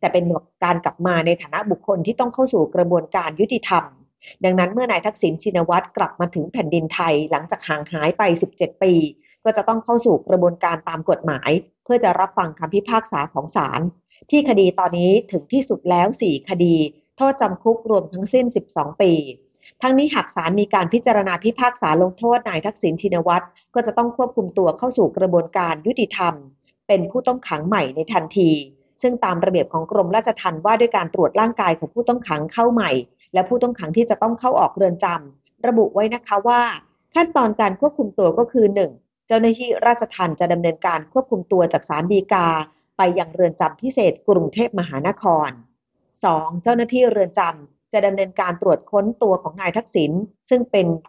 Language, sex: Thai, female